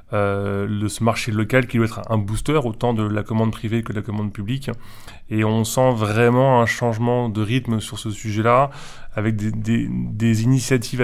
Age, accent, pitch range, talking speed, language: 20-39, French, 105-120 Hz, 195 wpm, French